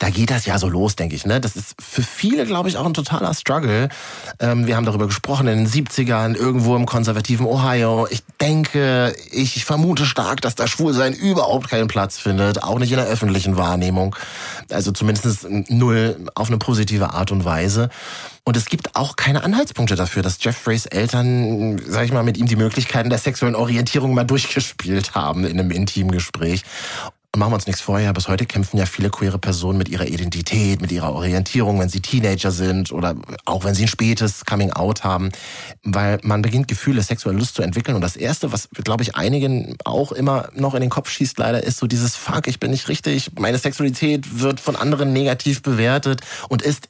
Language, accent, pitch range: German, German, 95-130 Hz